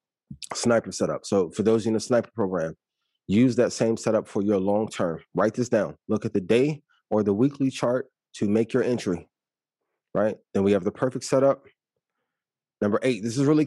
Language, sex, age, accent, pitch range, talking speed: English, male, 30-49, American, 100-130 Hz, 195 wpm